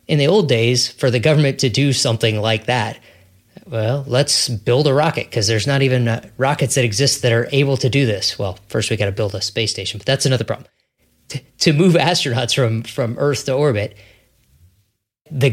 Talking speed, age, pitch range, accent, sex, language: 200 wpm, 20-39, 110-140 Hz, American, male, English